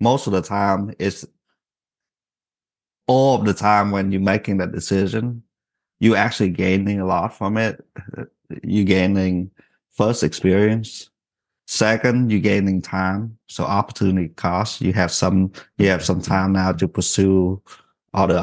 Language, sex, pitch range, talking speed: English, male, 95-105 Hz, 140 wpm